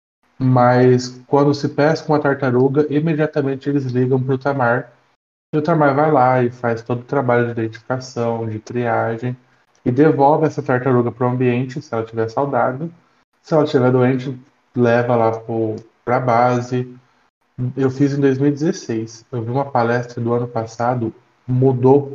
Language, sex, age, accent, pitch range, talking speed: Portuguese, male, 20-39, Brazilian, 120-140 Hz, 155 wpm